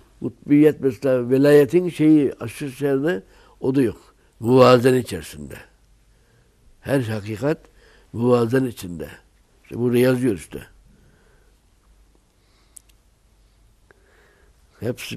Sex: male